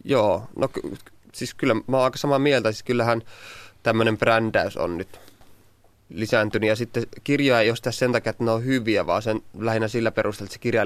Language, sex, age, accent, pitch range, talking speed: Finnish, male, 20-39, native, 105-115 Hz, 195 wpm